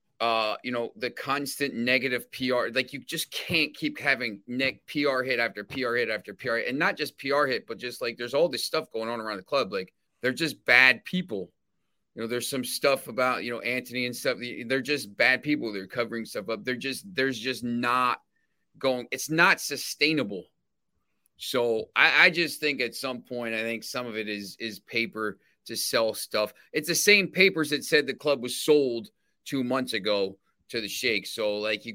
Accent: American